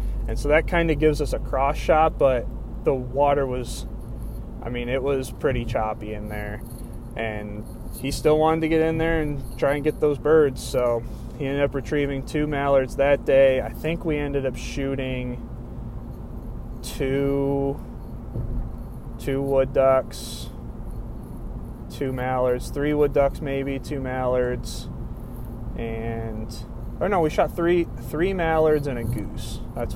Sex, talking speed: male, 150 wpm